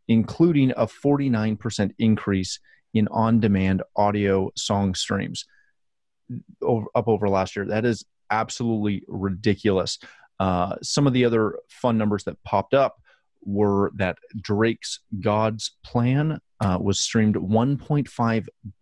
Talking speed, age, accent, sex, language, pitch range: 115 wpm, 30-49, American, male, English, 100-120 Hz